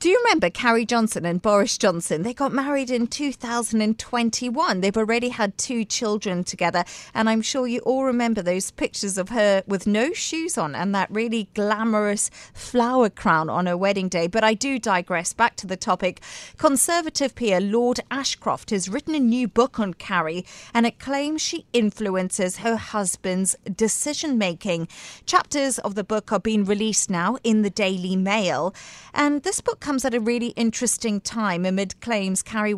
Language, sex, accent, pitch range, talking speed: English, female, British, 195-240 Hz, 175 wpm